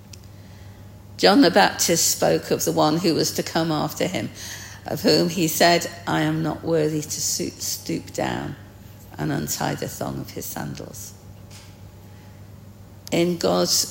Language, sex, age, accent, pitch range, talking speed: English, female, 50-69, British, 100-140 Hz, 140 wpm